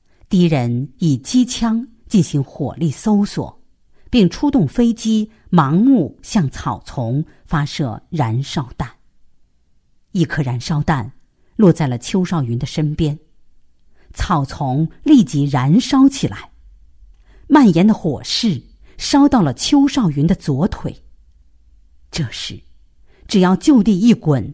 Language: Chinese